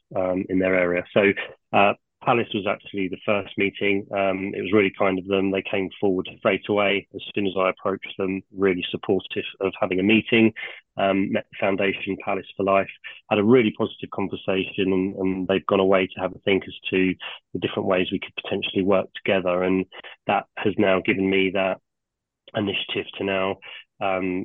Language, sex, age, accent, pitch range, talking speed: English, male, 20-39, British, 95-105 Hz, 190 wpm